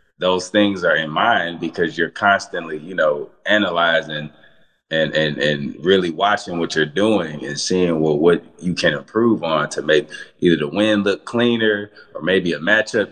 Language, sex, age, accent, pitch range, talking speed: English, male, 20-39, American, 80-105 Hz, 175 wpm